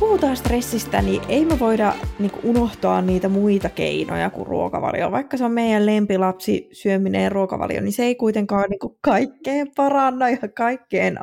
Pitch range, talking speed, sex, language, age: 210-270 Hz, 155 wpm, female, Finnish, 20-39